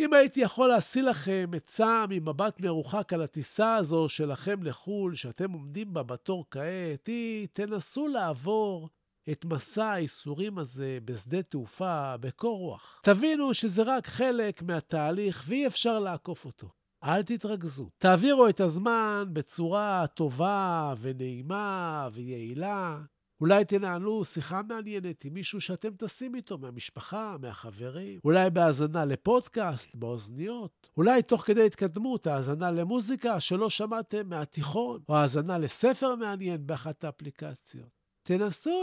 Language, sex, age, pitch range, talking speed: Hebrew, male, 50-69, 150-215 Hz, 120 wpm